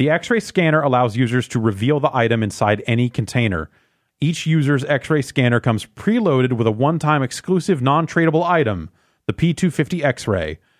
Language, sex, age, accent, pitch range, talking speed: English, male, 30-49, American, 115-155 Hz, 150 wpm